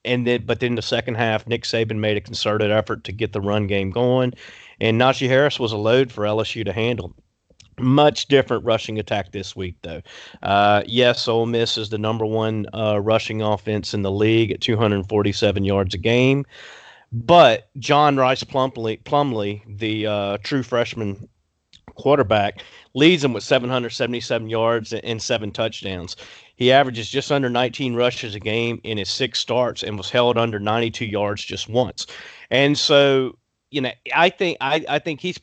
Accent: American